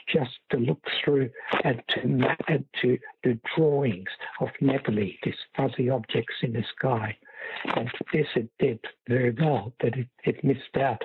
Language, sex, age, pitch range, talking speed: English, male, 60-79, 125-145 Hz, 160 wpm